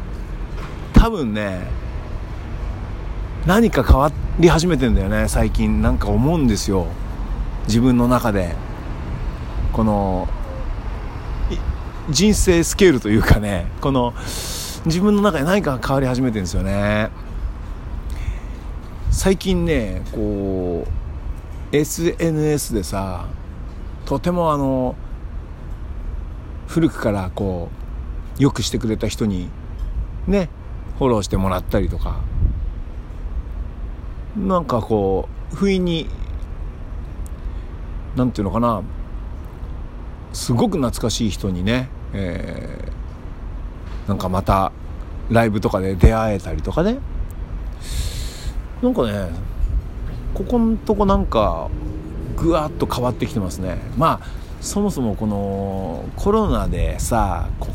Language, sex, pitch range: Japanese, male, 80-120 Hz